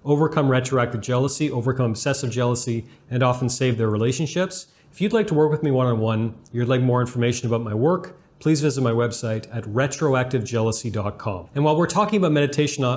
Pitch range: 120-145 Hz